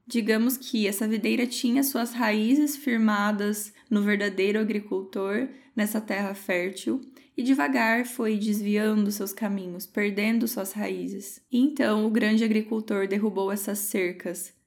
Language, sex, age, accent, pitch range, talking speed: Portuguese, female, 10-29, Brazilian, 200-230 Hz, 125 wpm